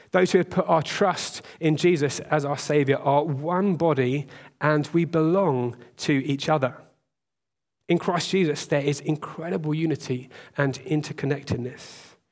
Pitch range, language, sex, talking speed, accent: 135-165 Hz, English, male, 140 wpm, British